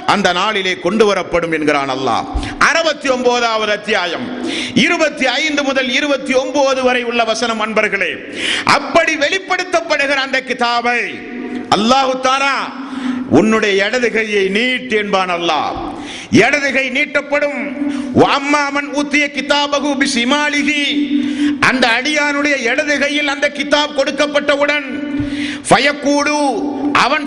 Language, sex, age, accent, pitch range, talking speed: Tamil, male, 50-69, native, 255-295 Hz, 45 wpm